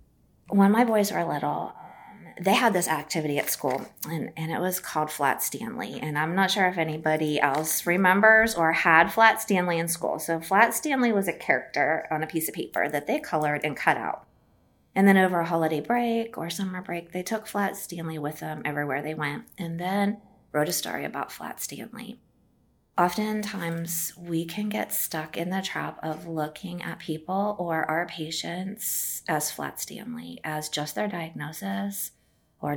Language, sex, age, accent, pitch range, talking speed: English, female, 20-39, American, 155-190 Hz, 180 wpm